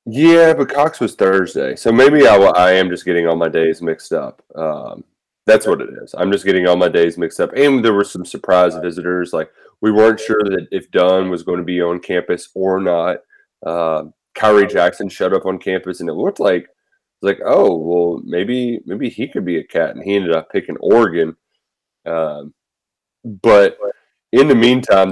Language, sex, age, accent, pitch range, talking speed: English, male, 20-39, American, 90-125 Hz, 200 wpm